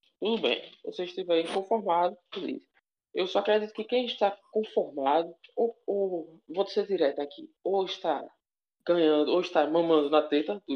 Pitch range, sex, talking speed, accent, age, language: 155-195 Hz, male, 160 wpm, Brazilian, 20-39, Portuguese